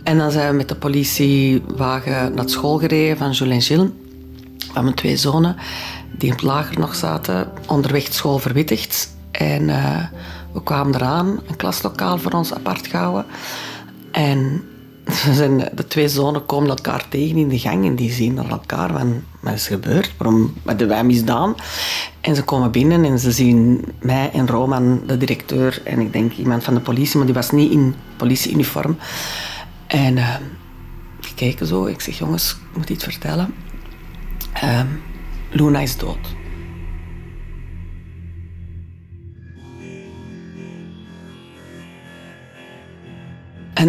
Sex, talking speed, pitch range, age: female, 140 wpm, 90-145 Hz, 40-59